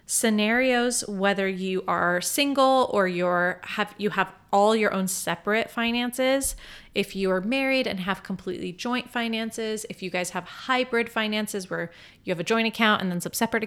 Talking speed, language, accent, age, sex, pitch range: 175 wpm, English, American, 30-49, female, 190-235 Hz